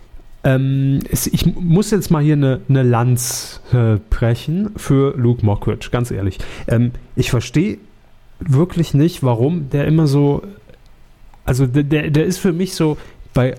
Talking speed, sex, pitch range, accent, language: 130 wpm, male, 120-155 Hz, German, German